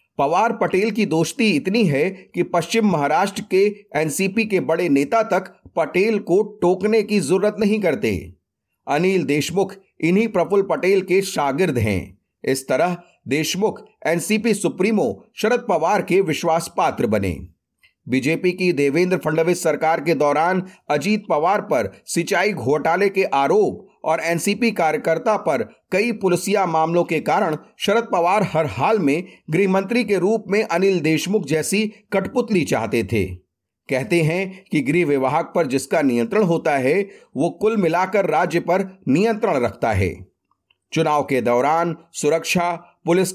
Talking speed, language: 140 wpm, Hindi